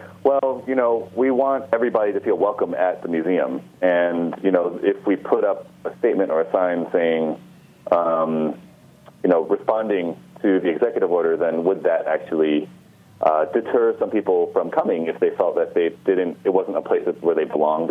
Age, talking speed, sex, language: 30-49, 190 wpm, male, English